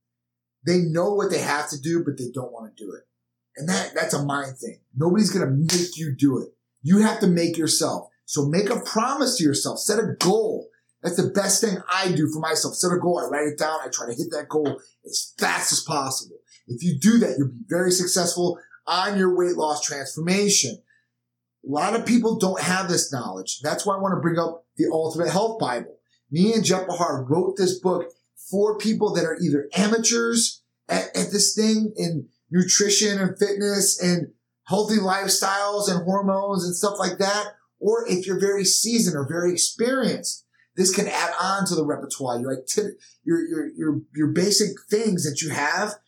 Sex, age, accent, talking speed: male, 30-49, American, 190 wpm